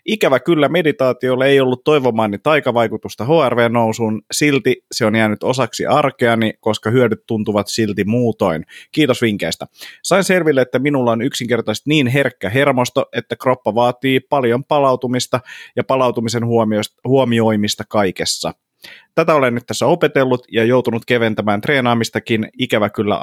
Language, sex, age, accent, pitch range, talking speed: Finnish, male, 30-49, native, 110-130 Hz, 130 wpm